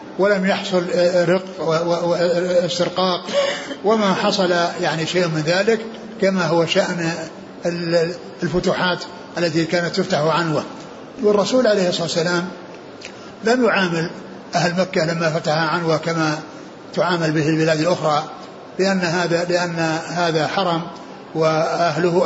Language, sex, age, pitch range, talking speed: Arabic, male, 60-79, 160-185 Hz, 110 wpm